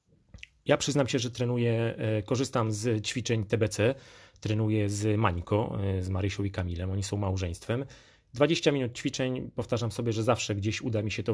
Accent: native